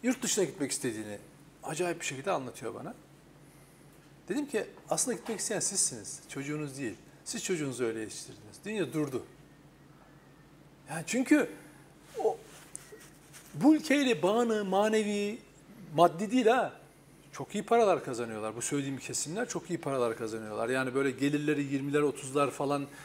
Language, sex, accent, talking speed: Turkish, male, native, 130 wpm